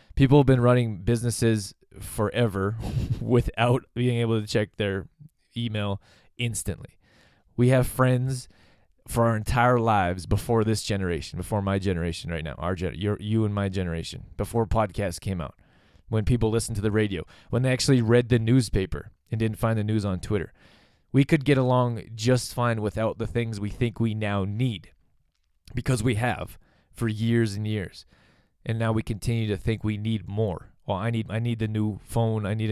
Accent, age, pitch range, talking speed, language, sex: American, 20-39, 100-125 Hz, 175 wpm, English, male